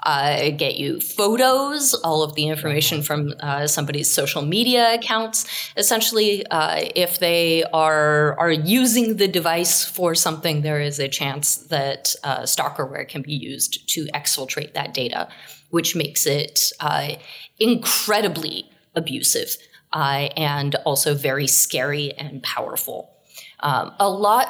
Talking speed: 135 wpm